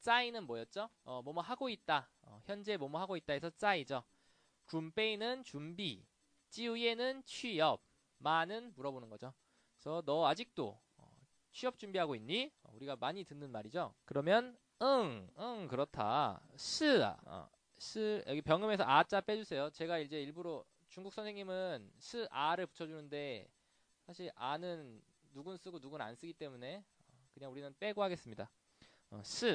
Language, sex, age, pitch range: Korean, male, 20-39, 130-215 Hz